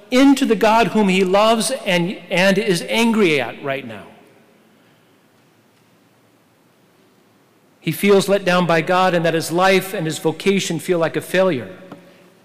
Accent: American